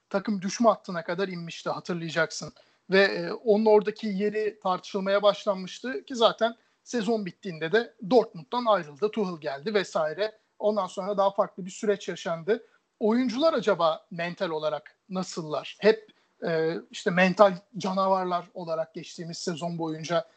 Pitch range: 180-215 Hz